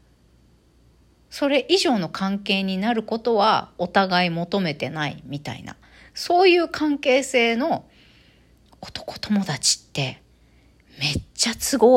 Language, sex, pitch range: Japanese, female, 175-280 Hz